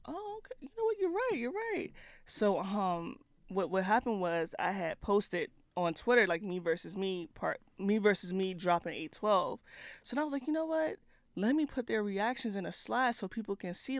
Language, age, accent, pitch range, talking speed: English, 20-39, American, 170-205 Hz, 220 wpm